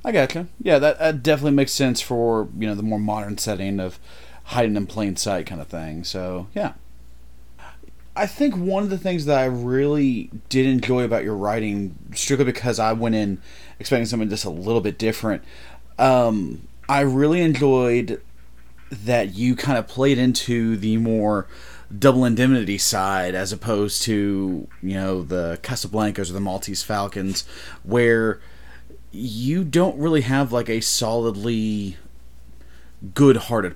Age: 30-49